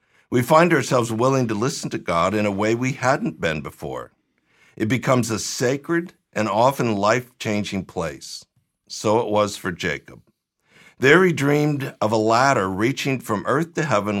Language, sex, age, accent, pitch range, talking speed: English, male, 60-79, American, 105-145 Hz, 165 wpm